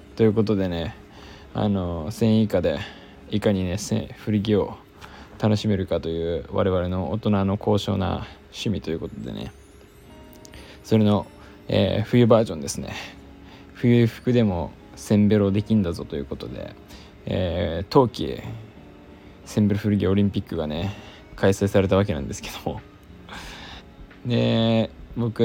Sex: male